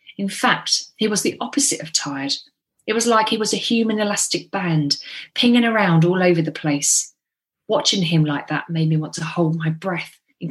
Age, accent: 30-49, British